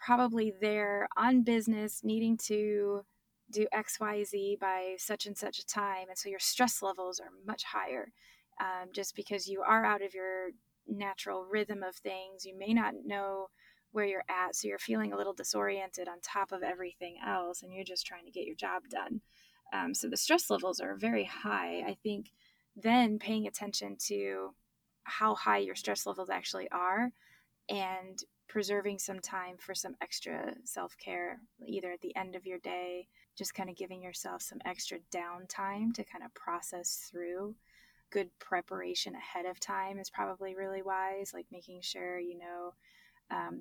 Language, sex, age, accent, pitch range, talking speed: English, female, 20-39, American, 180-210 Hz, 175 wpm